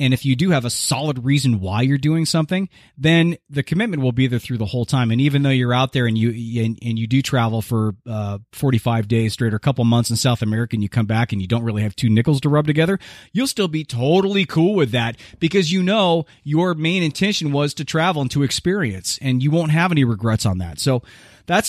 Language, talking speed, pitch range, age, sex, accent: English, 250 wpm, 120-165 Hz, 30-49, male, American